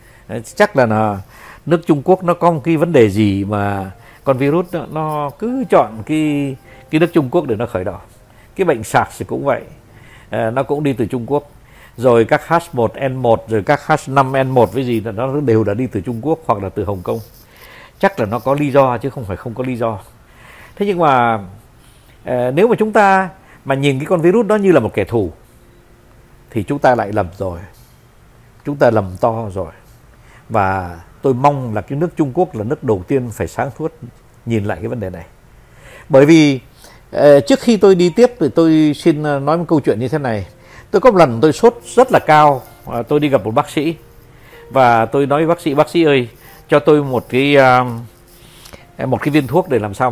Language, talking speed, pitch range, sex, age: Vietnamese, 210 wpm, 115-155 Hz, male, 60-79